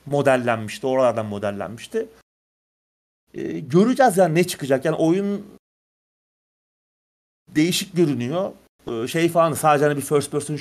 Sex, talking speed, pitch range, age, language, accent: male, 115 wpm, 110-155 Hz, 30-49, Turkish, native